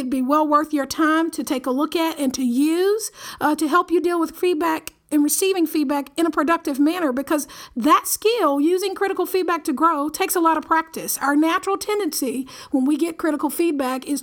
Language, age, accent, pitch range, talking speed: English, 50-69, American, 270-320 Hz, 210 wpm